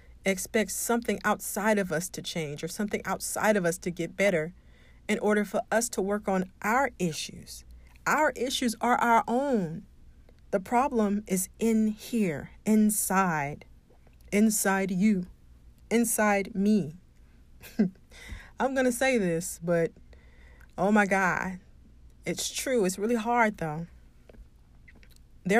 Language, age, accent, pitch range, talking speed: English, 40-59, American, 165-220 Hz, 125 wpm